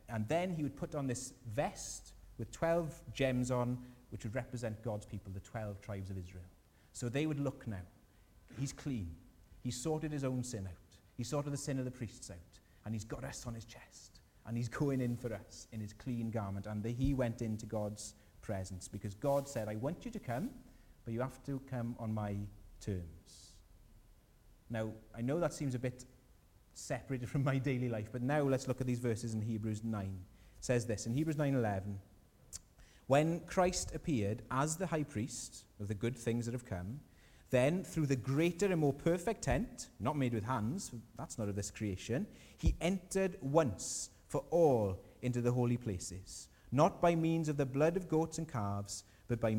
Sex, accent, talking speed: male, British, 195 wpm